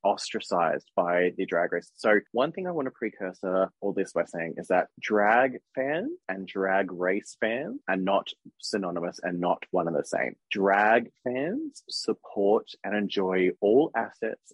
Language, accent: English, Australian